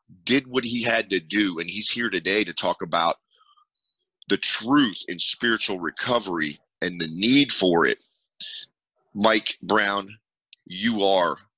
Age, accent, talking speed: 30-49, American, 140 wpm